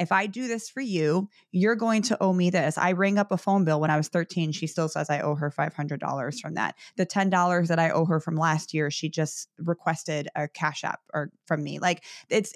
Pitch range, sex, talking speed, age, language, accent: 160-195 Hz, female, 240 wpm, 20-39, English, American